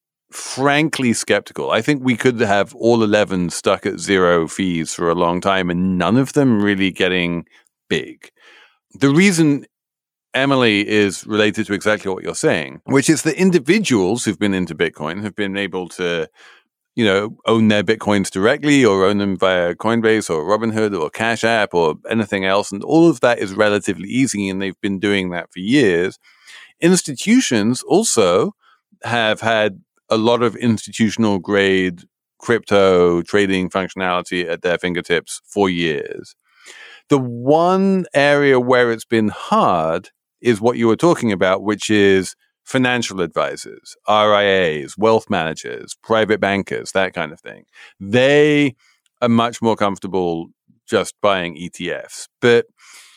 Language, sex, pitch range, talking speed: English, male, 100-140 Hz, 150 wpm